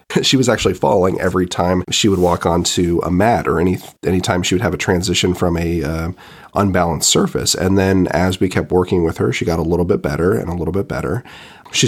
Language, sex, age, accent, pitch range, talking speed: English, male, 30-49, American, 85-100 Hz, 230 wpm